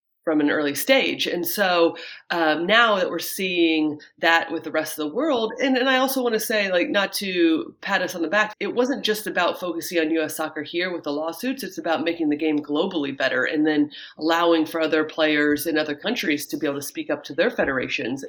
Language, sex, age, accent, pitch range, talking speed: English, female, 30-49, American, 150-195 Hz, 230 wpm